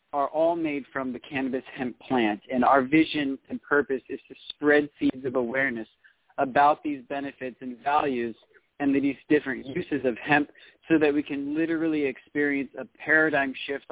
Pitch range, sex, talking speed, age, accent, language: 130-150 Hz, male, 170 wpm, 40-59, American, English